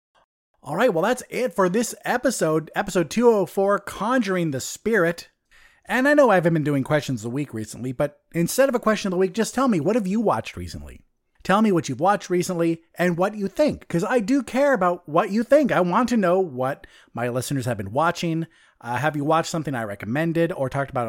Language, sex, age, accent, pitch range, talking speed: English, male, 30-49, American, 150-205 Hz, 225 wpm